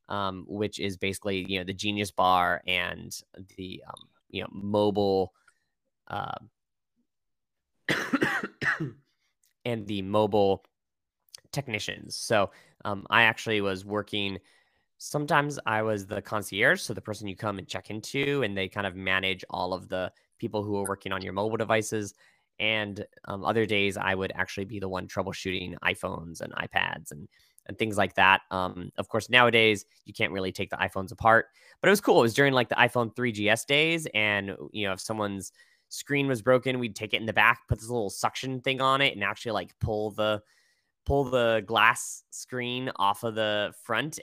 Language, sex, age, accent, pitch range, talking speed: English, male, 20-39, American, 95-115 Hz, 180 wpm